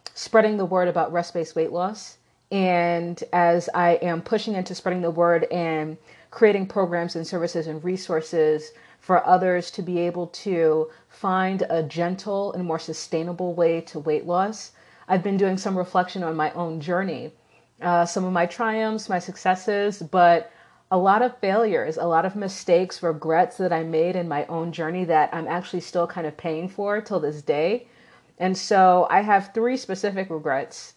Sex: female